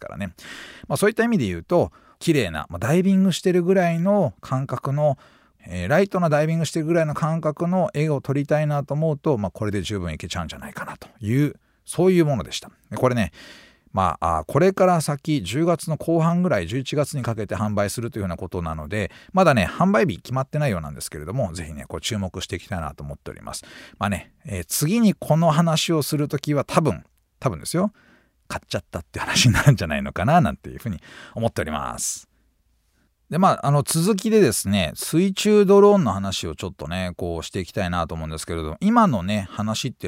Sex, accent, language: male, native, Japanese